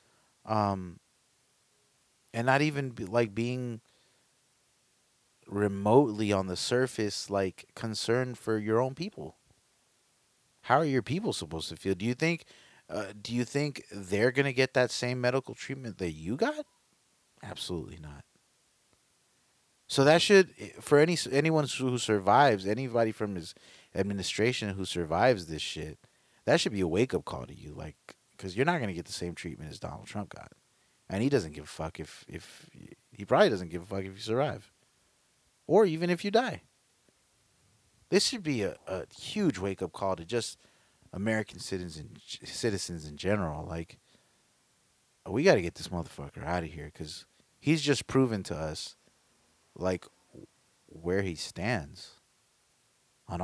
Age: 30-49